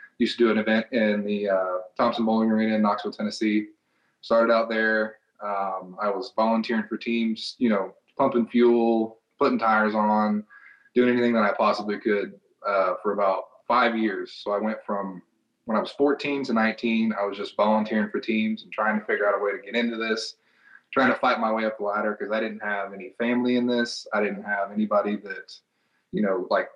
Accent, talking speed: American, 205 wpm